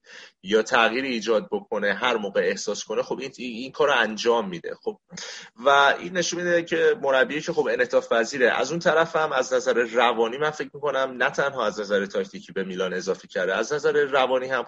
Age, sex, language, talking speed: 30-49, male, Persian, 190 wpm